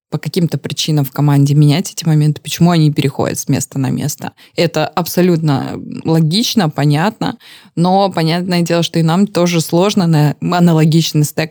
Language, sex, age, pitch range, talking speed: Russian, female, 20-39, 155-210 Hz, 155 wpm